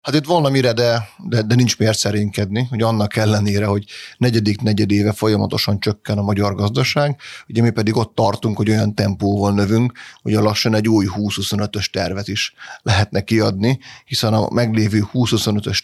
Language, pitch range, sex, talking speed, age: Hungarian, 100-115 Hz, male, 165 wpm, 30-49